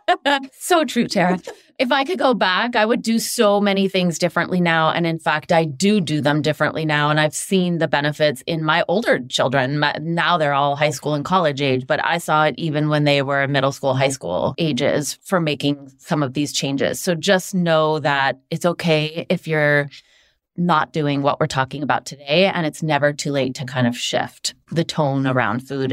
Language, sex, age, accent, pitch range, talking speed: English, female, 30-49, American, 150-190 Hz, 205 wpm